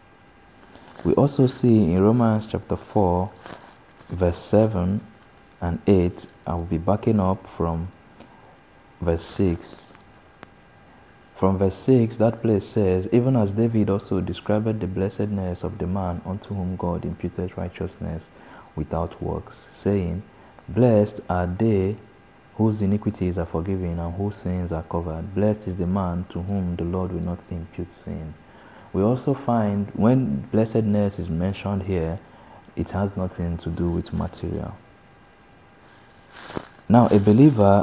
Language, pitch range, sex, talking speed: English, 85-105 Hz, male, 135 wpm